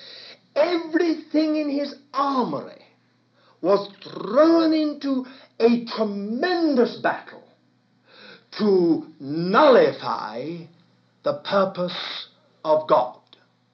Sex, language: male, English